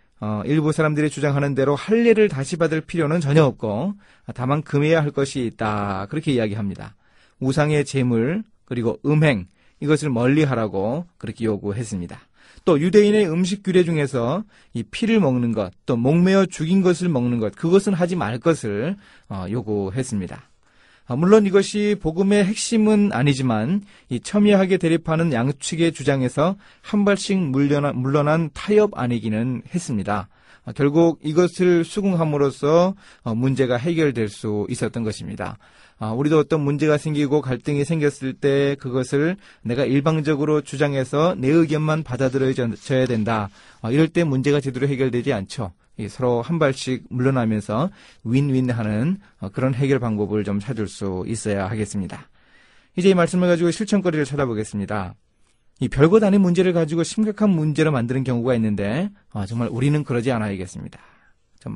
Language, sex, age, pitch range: Korean, male, 30-49, 120-165 Hz